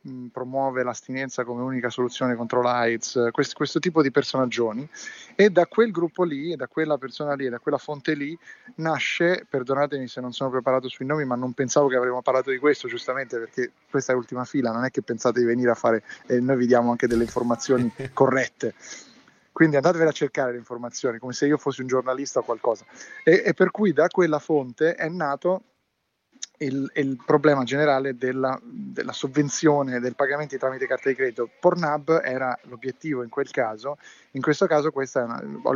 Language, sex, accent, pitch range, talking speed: Italian, male, native, 125-150 Hz, 185 wpm